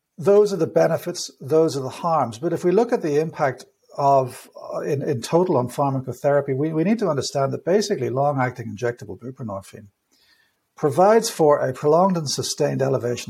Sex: male